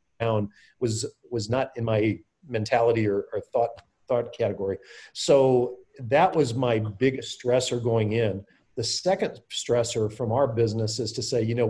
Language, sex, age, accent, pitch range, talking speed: English, male, 40-59, American, 110-125 Hz, 155 wpm